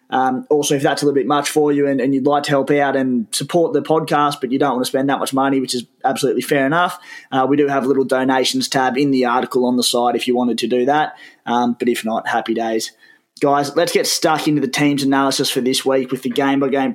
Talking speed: 265 wpm